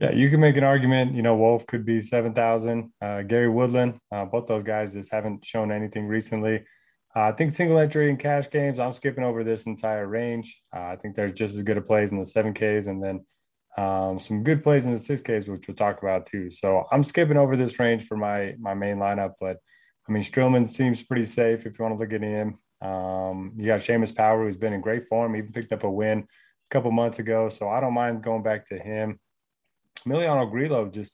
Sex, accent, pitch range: male, American, 100-120 Hz